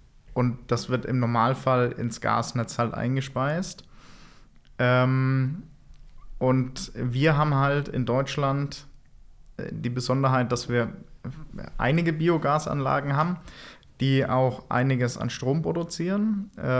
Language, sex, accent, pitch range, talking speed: German, male, German, 120-135 Hz, 100 wpm